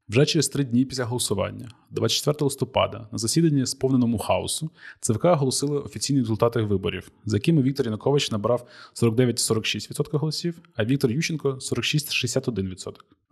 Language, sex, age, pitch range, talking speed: Ukrainian, male, 20-39, 115-140 Hz, 135 wpm